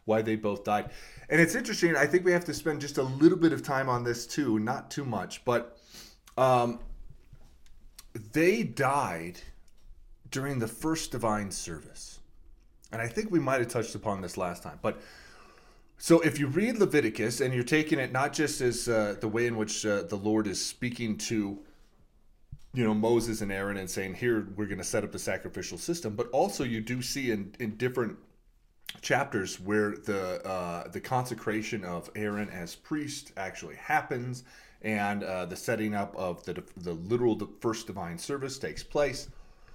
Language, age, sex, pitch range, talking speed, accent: English, 30-49, male, 100-130 Hz, 180 wpm, American